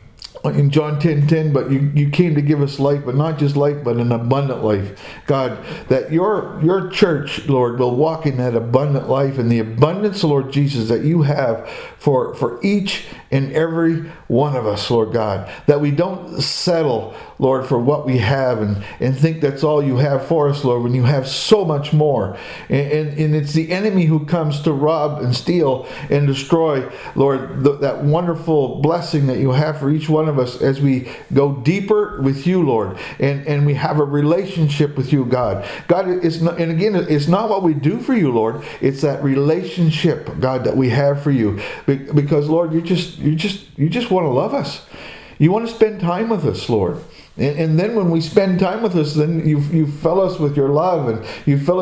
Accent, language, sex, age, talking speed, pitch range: American, English, male, 50-69, 210 wpm, 135-165 Hz